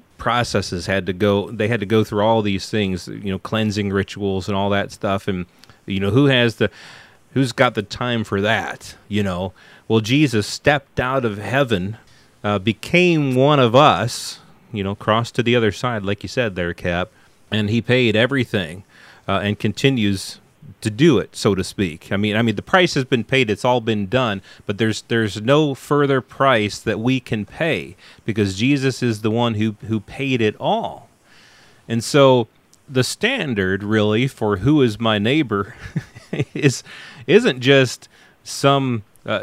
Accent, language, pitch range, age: American, English, 100-130 Hz, 30-49